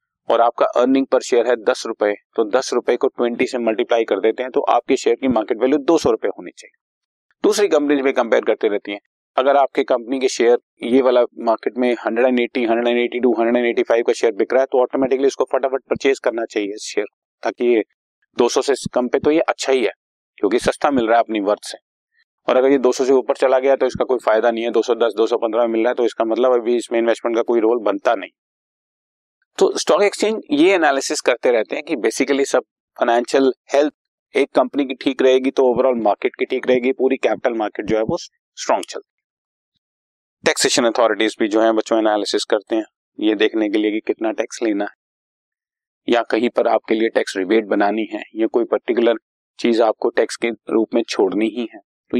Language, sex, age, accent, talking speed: Hindi, male, 40-59, native, 210 wpm